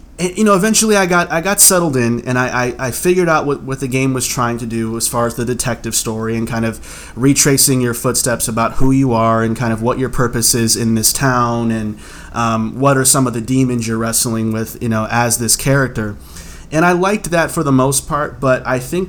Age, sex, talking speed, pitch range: 30-49, male, 240 wpm, 115-150 Hz